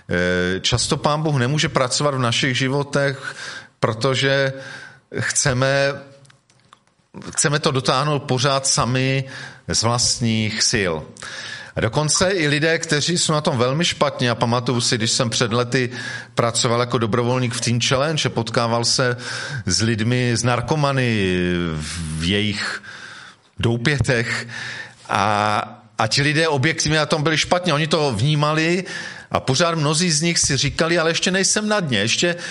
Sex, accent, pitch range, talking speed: male, native, 120-150 Hz, 140 wpm